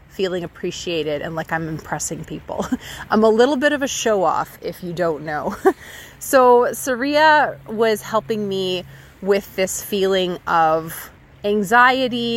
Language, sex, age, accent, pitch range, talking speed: English, female, 30-49, American, 145-210 Hz, 140 wpm